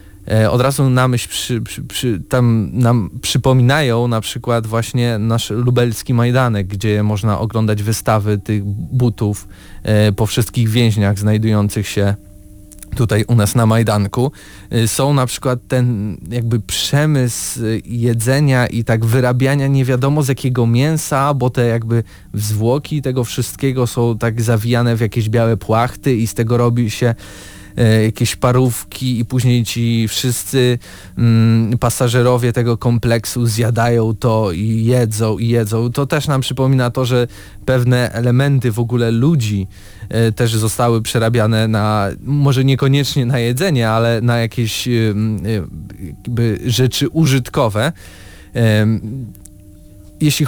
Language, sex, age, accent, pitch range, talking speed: Polish, male, 20-39, native, 110-130 Hz, 125 wpm